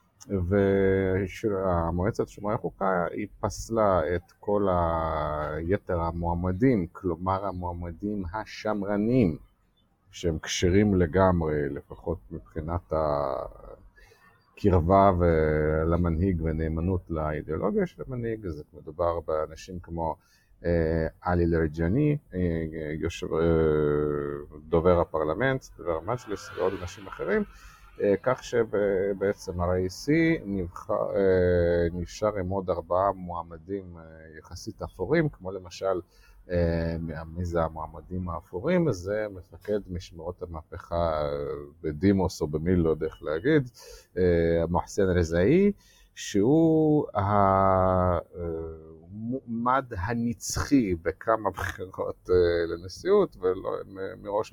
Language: Hebrew